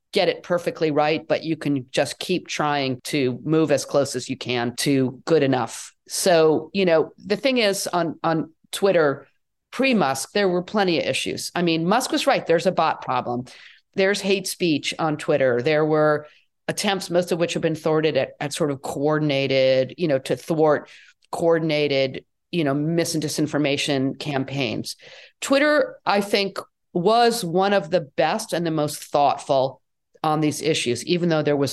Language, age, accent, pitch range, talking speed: English, 40-59, American, 150-195 Hz, 175 wpm